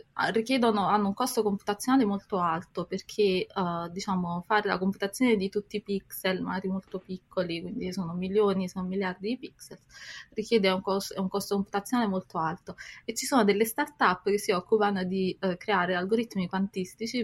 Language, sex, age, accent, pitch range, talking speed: Italian, female, 20-39, native, 180-210 Hz, 165 wpm